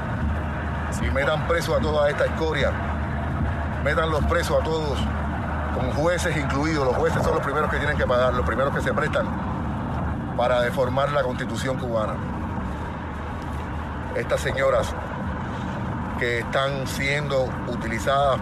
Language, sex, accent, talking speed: Spanish, male, Venezuelan, 130 wpm